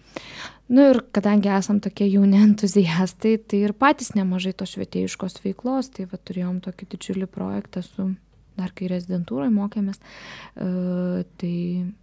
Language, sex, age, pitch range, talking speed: English, female, 20-39, 180-205 Hz, 130 wpm